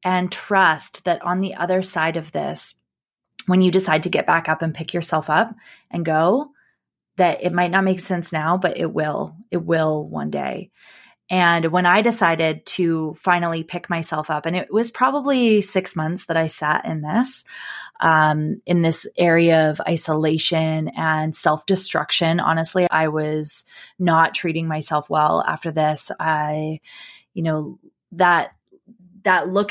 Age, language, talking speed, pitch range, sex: 20-39, English, 160 wpm, 160-200 Hz, female